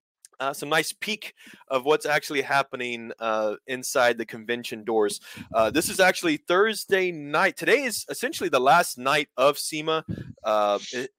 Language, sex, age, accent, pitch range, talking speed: English, male, 20-39, American, 120-170 Hz, 155 wpm